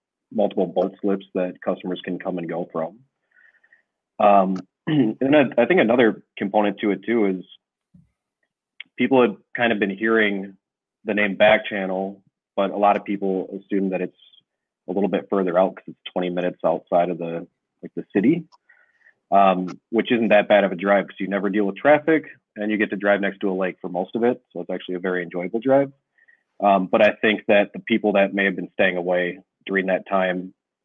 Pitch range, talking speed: 90-105 Hz, 200 wpm